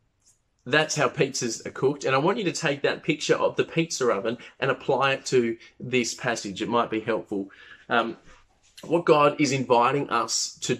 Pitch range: 115-140 Hz